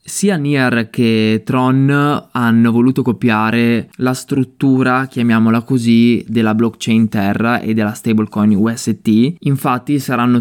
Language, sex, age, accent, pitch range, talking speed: Italian, male, 20-39, native, 110-130 Hz, 115 wpm